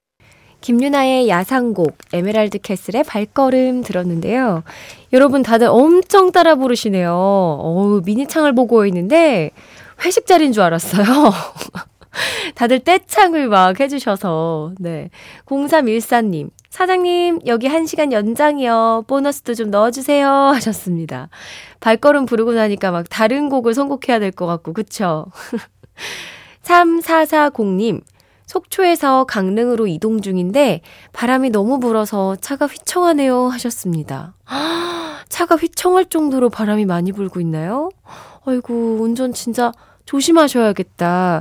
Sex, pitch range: female, 190-290 Hz